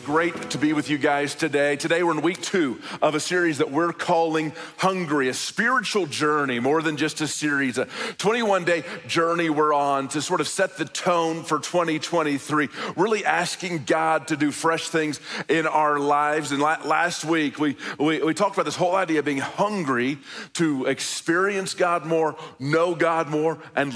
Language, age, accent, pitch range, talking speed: English, 40-59, American, 155-180 Hz, 180 wpm